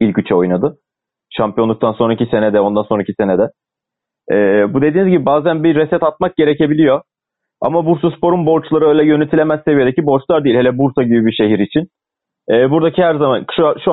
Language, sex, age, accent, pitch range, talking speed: Turkish, male, 30-49, native, 125-155 Hz, 170 wpm